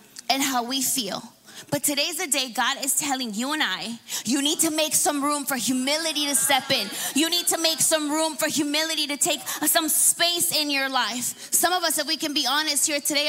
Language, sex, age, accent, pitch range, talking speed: English, female, 20-39, American, 275-330 Hz, 225 wpm